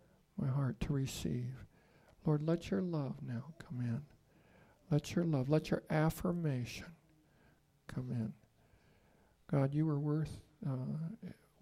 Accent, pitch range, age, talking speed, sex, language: American, 120-155 Hz, 60-79, 125 wpm, male, English